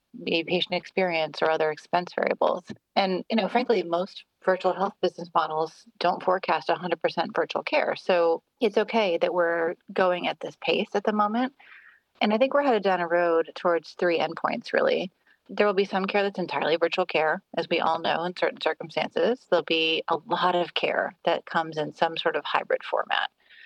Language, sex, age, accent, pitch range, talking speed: English, female, 30-49, American, 165-205 Hz, 190 wpm